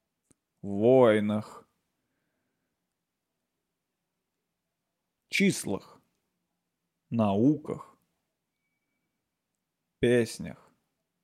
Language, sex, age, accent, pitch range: Russian, male, 30-49, native, 115-135 Hz